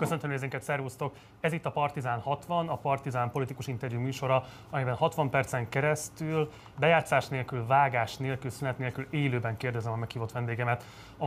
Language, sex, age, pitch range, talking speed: Hungarian, male, 30-49, 115-135 Hz, 155 wpm